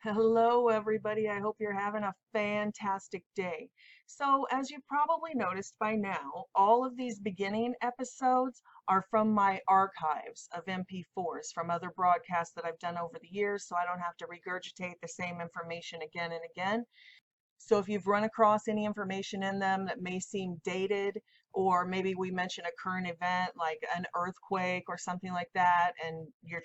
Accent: American